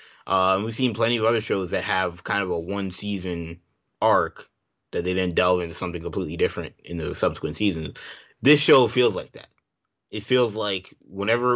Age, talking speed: 20-39, 185 wpm